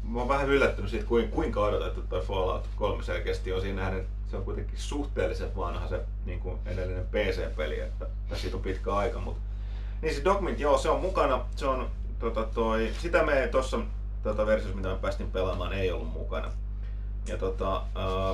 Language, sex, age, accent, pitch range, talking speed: Finnish, male, 30-49, native, 95-105 Hz, 175 wpm